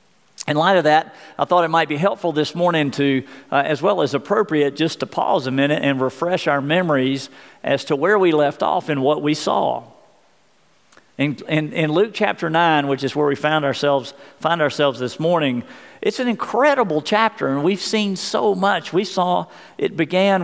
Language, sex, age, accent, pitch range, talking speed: English, male, 50-69, American, 145-190 Hz, 195 wpm